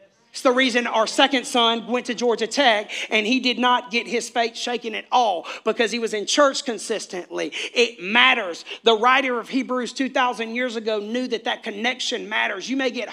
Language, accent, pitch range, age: English, American, 195-255 Hz, 40-59